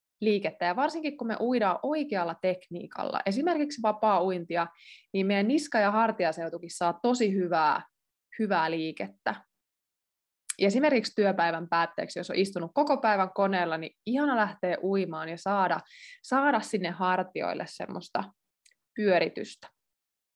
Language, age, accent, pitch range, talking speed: Finnish, 20-39, native, 180-235 Hz, 125 wpm